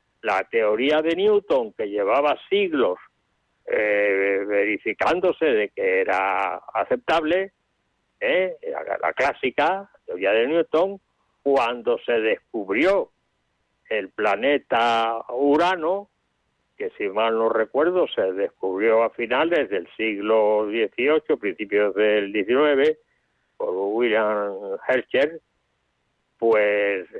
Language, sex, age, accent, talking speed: Spanish, male, 60-79, Spanish, 100 wpm